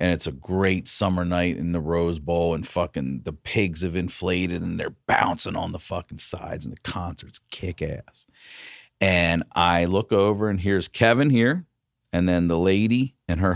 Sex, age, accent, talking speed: male, 40-59, American, 185 wpm